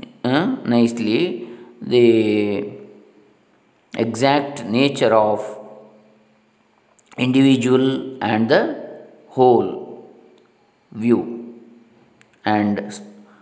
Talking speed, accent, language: 55 wpm, native, Kannada